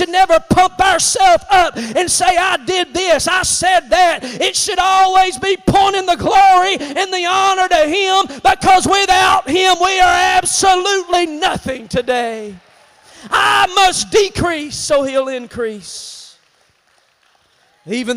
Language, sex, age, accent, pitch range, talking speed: English, male, 40-59, American, 260-355 Hz, 130 wpm